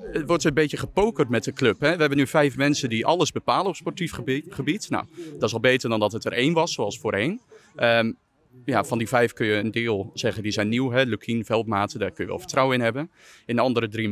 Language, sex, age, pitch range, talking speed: Dutch, male, 30-49, 110-135 Hz, 255 wpm